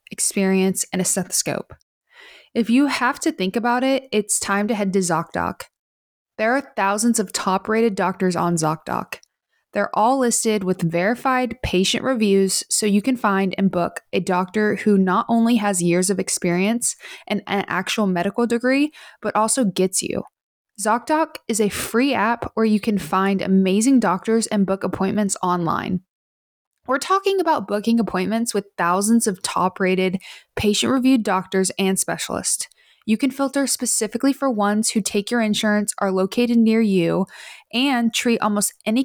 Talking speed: 160 wpm